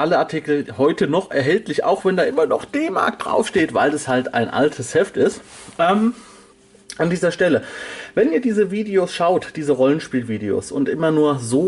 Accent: German